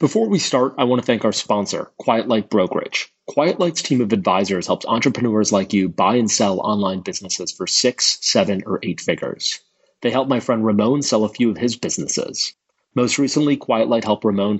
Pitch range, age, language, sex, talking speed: 100-125 Hz, 30-49, English, male, 195 wpm